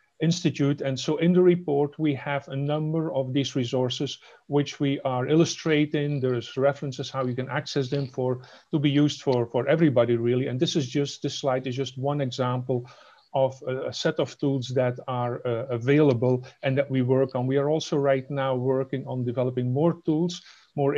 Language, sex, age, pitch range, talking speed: English, male, 40-59, 125-150 Hz, 195 wpm